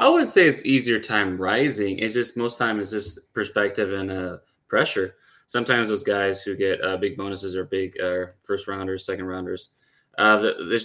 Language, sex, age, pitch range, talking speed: English, male, 20-39, 95-105 Hz, 195 wpm